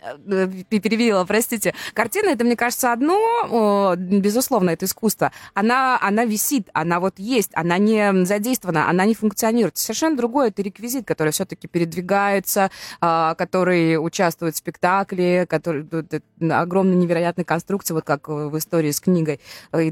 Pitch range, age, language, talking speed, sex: 155-210 Hz, 20-39, Russian, 135 wpm, female